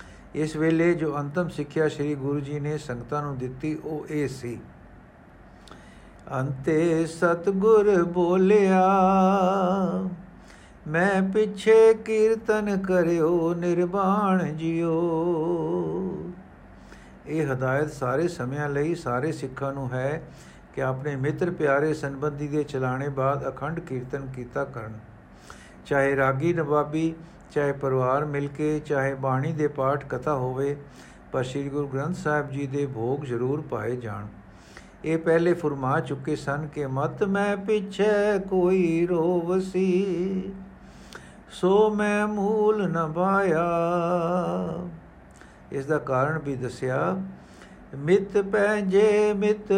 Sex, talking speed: male, 105 wpm